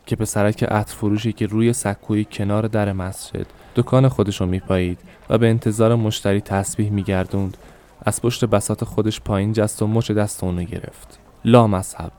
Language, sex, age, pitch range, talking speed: Persian, male, 10-29, 100-115 Hz, 155 wpm